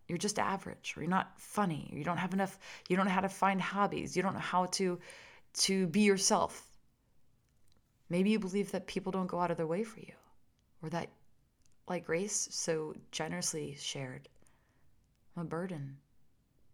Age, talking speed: 30-49, 180 wpm